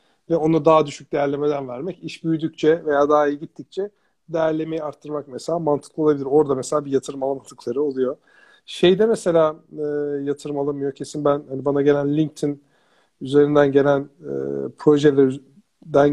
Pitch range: 135-165 Hz